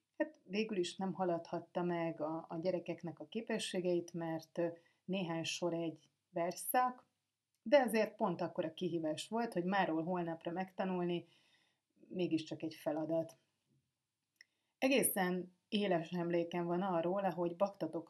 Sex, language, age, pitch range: female, Hungarian, 30-49, 165-195 Hz